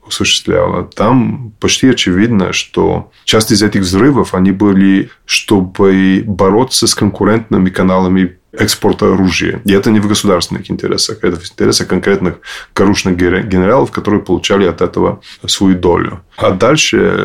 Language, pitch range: Russian, 90-105 Hz